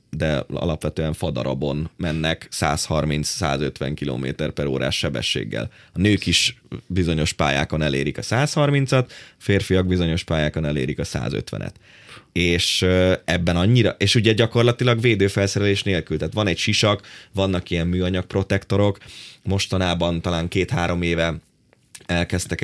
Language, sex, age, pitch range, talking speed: Hungarian, male, 20-39, 80-95 Hz, 115 wpm